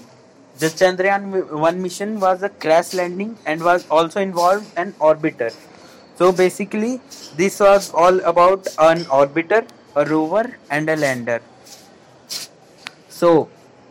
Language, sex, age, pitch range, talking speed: Malay, male, 20-39, 150-190 Hz, 120 wpm